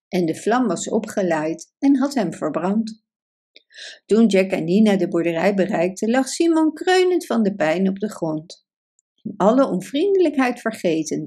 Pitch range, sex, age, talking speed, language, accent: 185-285 Hz, female, 60-79, 150 wpm, Dutch, Dutch